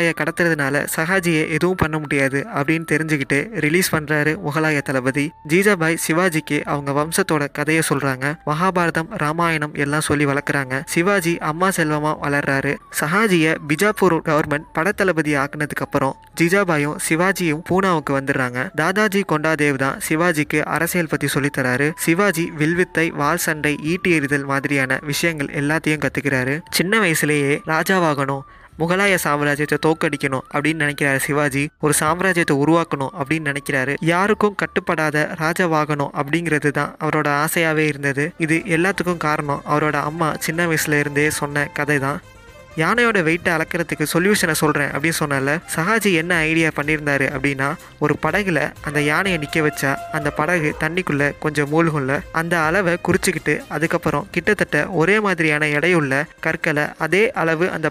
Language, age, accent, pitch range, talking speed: Tamil, 20-39, native, 145-170 Hz, 95 wpm